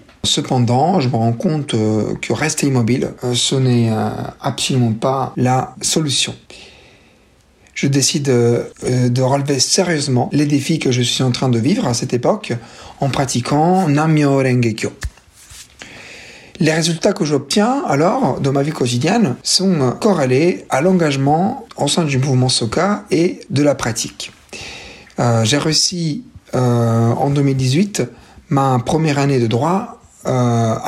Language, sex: French, male